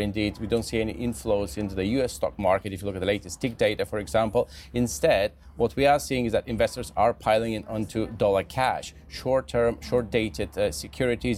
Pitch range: 110-125 Hz